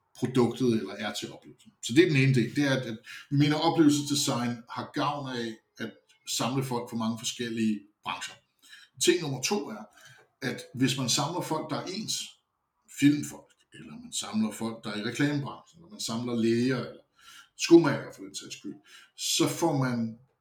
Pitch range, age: 115-145 Hz, 60-79